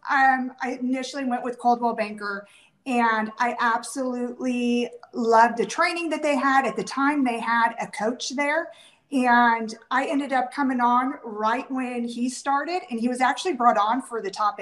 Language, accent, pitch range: English, American, 205-255 Hz